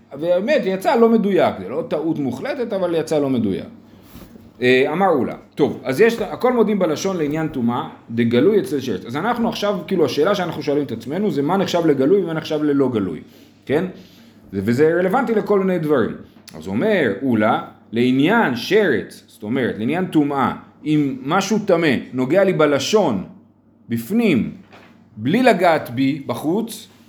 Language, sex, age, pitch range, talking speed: Hebrew, male, 40-59, 130-205 Hz, 155 wpm